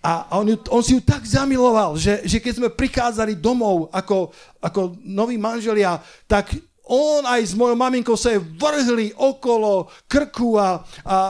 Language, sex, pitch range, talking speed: Slovak, male, 175-225 Hz, 155 wpm